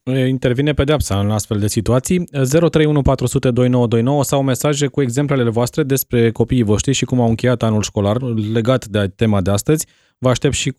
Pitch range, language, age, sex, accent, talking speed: 120-145 Hz, Romanian, 20-39, male, native, 160 wpm